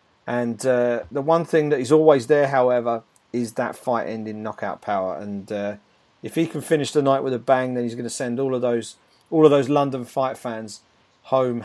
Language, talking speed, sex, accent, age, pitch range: English, 215 wpm, male, British, 40-59, 130-170 Hz